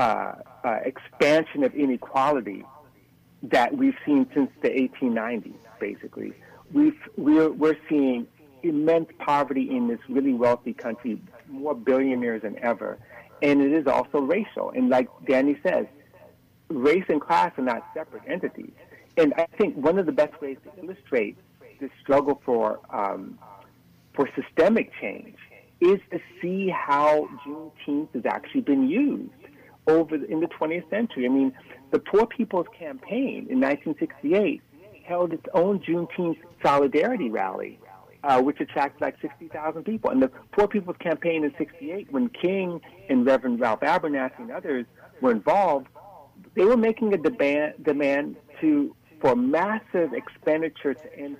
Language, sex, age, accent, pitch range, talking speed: English, male, 50-69, American, 140-215 Hz, 145 wpm